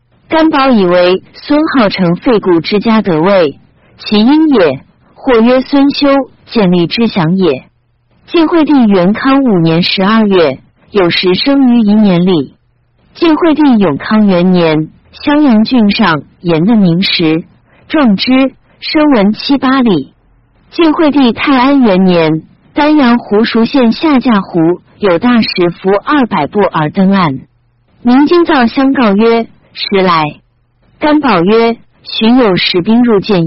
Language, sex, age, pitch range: Japanese, female, 50-69, 180-265 Hz